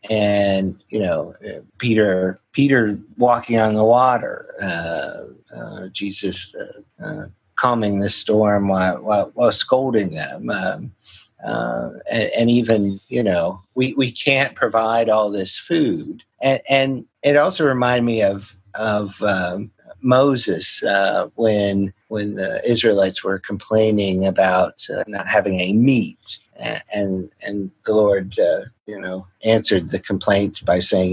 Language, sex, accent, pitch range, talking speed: English, male, American, 100-120 Hz, 135 wpm